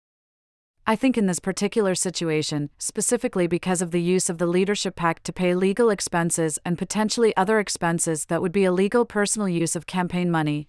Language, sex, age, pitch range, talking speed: English, female, 40-59, 165-195 Hz, 180 wpm